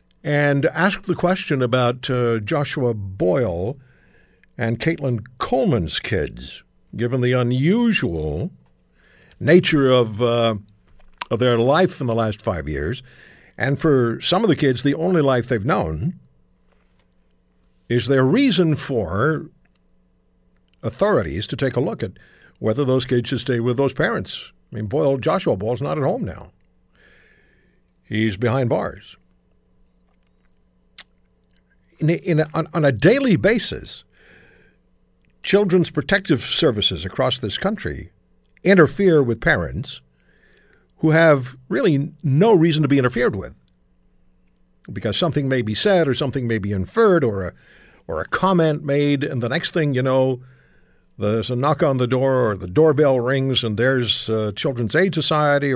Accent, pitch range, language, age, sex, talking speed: American, 105-155 Hz, English, 60-79, male, 140 wpm